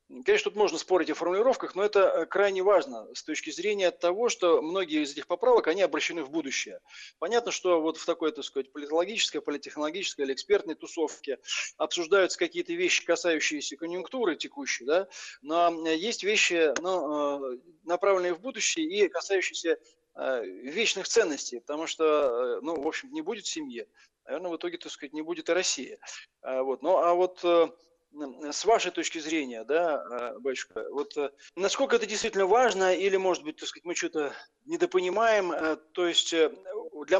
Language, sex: Russian, male